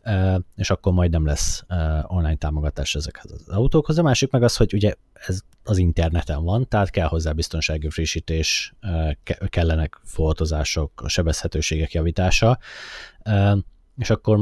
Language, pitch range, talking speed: Hungarian, 80-100 Hz, 150 wpm